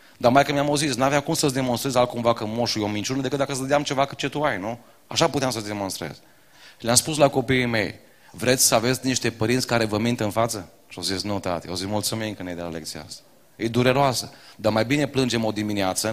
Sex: male